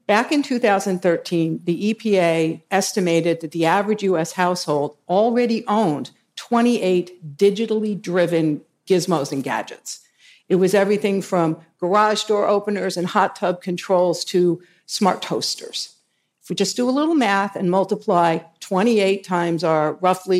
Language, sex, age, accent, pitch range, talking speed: English, female, 50-69, American, 170-215 Hz, 135 wpm